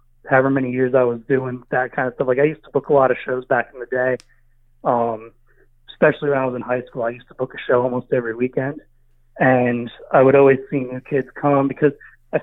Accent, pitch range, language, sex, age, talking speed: American, 125-155 Hz, English, male, 30-49, 240 wpm